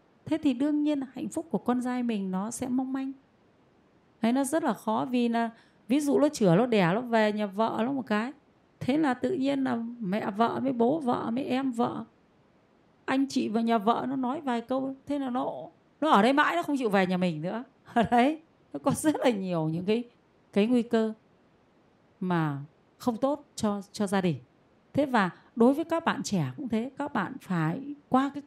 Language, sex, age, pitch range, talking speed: Vietnamese, female, 20-39, 190-275 Hz, 220 wpm